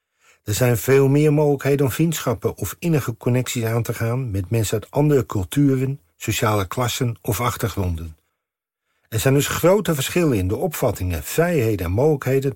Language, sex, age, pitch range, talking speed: Dutch, male, 50-69, 95-140 Hz, 160 wpm